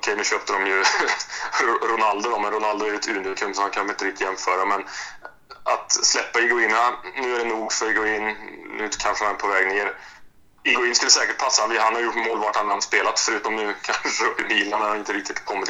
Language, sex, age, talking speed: Swedish, male, 20-39, 215 wpm